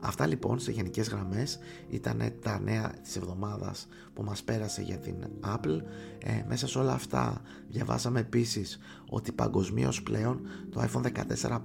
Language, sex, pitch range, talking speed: Greek, male, 95-120 Hz, 150 wpm